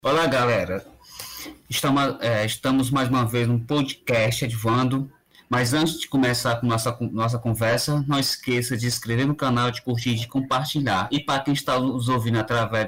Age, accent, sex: 20-39, Brazilian, male